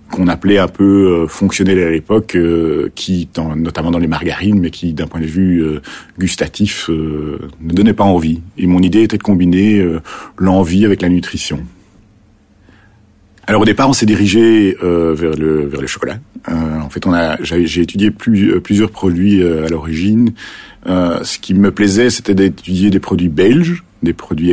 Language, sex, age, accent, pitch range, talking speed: French, male, 50-69, French, 80-100 Hz, 185 wpm